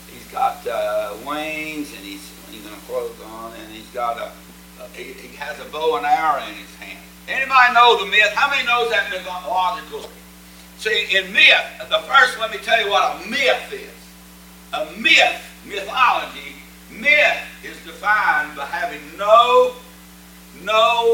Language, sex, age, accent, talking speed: English, male, 60-79, American, 160 wpm